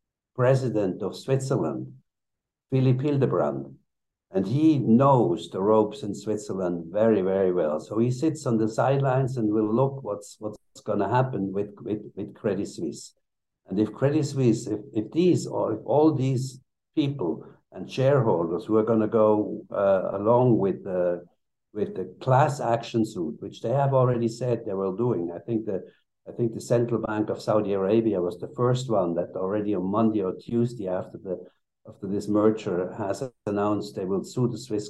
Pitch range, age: 105-130 Hz, 60-79